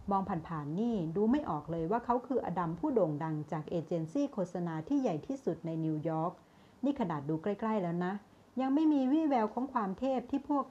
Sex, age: female, 60-79